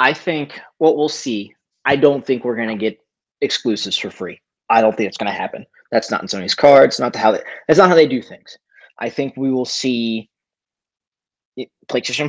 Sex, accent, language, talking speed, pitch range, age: male, American, English, 210 wpm, 110-135 Hz, 30-49